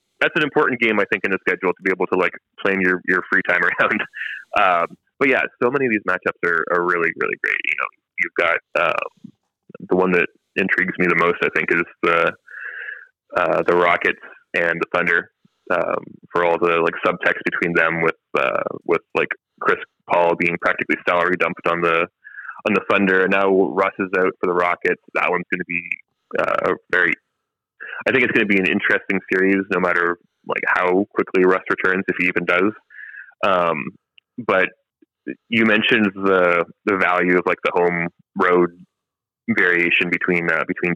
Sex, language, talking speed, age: male, English, 190 wpm, 20-39